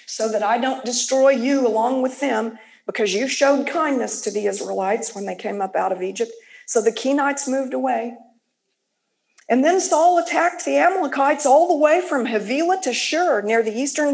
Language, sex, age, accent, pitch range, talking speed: English, female, 50-69, American, 240-350 Hz, 185 wpm